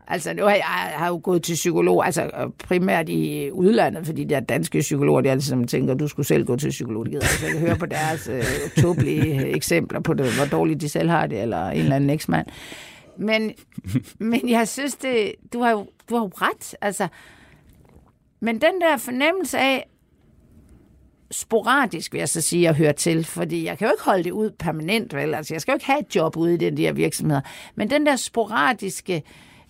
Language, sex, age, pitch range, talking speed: Danish, female, 60-79, 170-240 Hz, 210 wpm